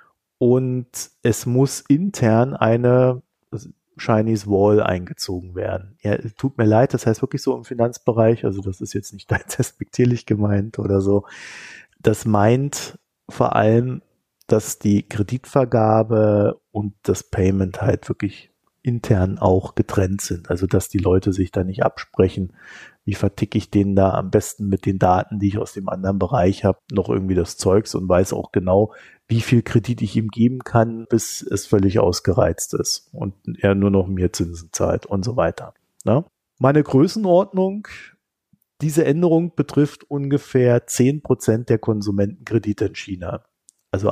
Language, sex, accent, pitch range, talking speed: German, male, German, 95-125 Hz, 150 wpm